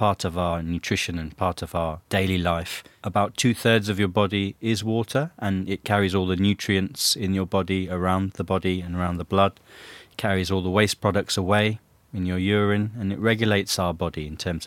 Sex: male